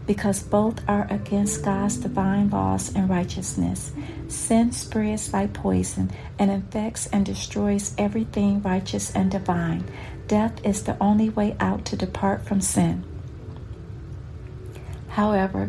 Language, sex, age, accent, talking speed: English, female, 50-69, American, 120 wpm